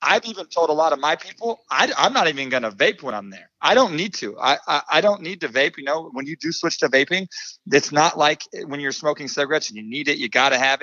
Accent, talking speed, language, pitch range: American, 285 wpm, English, 130-160 Hz